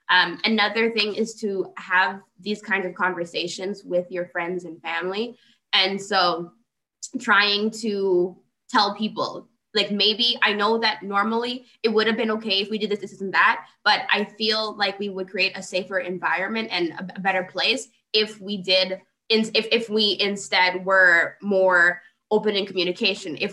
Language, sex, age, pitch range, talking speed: English, female, 20-39, 185-220 Hz, 170 wpm